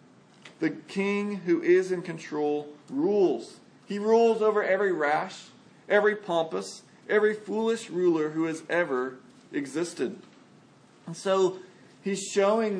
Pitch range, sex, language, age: 175-220 Hz, male, English, 40-59